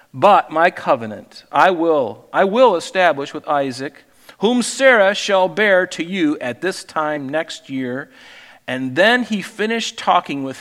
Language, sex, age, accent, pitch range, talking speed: English, male, 40-59, American, 125-155 Hz, 155 wpm